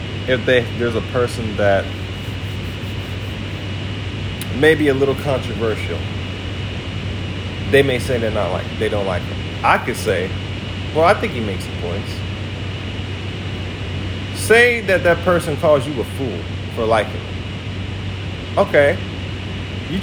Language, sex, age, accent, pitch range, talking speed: English, male, 30-49, American, 95-115 Hz, 135 wpm